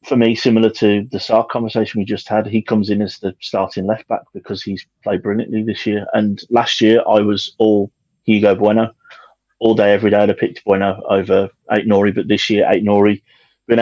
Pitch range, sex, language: 105-115 Hz, male, English